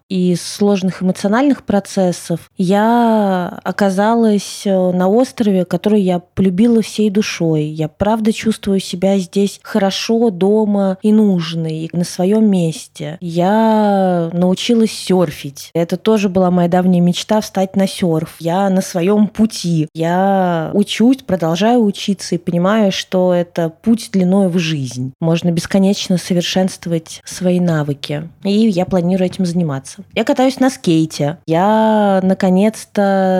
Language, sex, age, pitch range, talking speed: Russian, female, 20-39, 175-210 Hz, 125 wpm